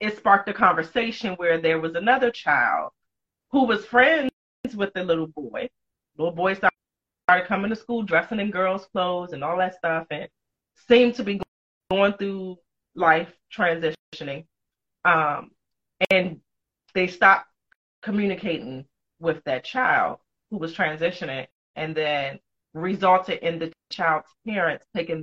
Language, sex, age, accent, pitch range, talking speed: English, female, 30-49, American, 165-225 Hz, 140 wpm